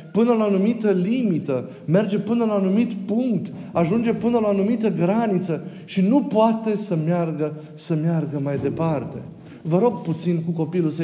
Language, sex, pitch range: Romanian, male, 140-195 Hz